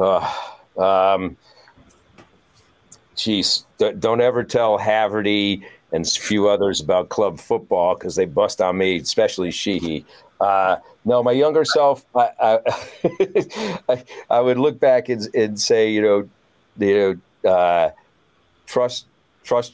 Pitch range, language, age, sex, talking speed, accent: 90-110 Hz, English, 50-69, male, 135 wpm, American